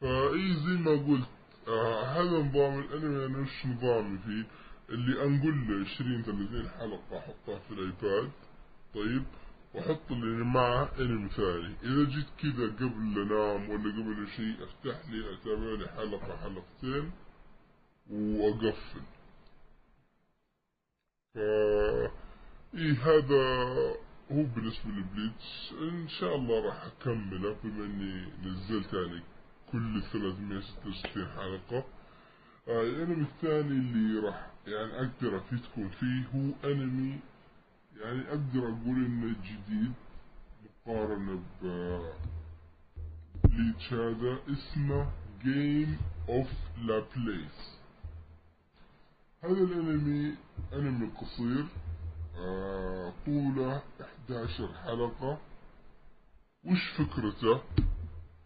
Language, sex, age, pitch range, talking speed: Arabic, female, 20-39, 100-135 Hz, 95 wpm